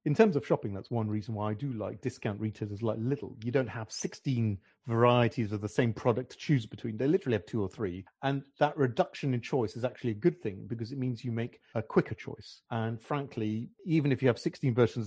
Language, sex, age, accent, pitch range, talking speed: English, male, 40-59, British, 110-135 Hz, 235 wpm